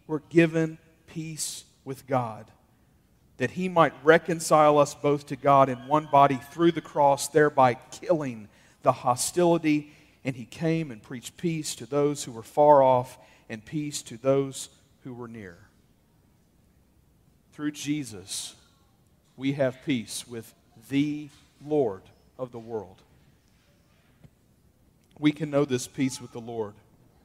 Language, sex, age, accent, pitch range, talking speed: English, male, 40-59, American, 130-160 Hz, 135 wpm